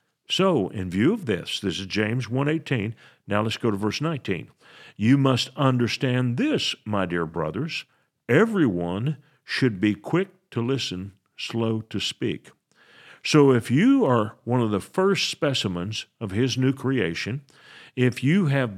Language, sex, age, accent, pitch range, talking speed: English, male, 50-69, American, 105-145 Hz, 150 wpm